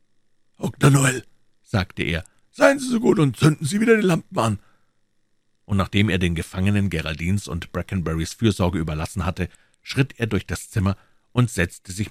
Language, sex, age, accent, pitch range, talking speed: German, male, 50-69, German, 90-115 Hz, 170 wpm